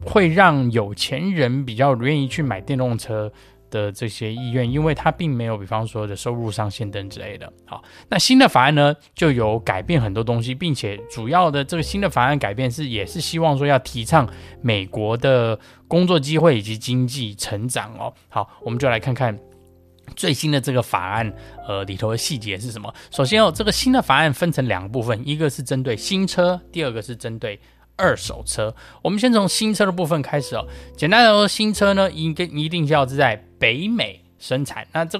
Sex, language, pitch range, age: male, Chinese, 105-150 Hz, 20-39